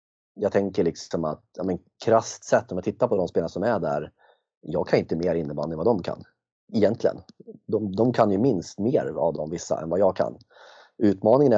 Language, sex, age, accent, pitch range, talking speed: Swedish, male, 30-49, native, 95-115 Hz, 205 wpm